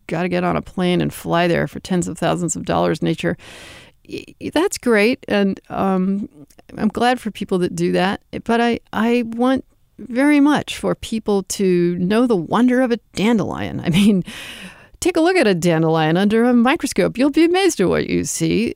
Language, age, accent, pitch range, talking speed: English, 50-69, American, 170-240 Hz, 190 wpm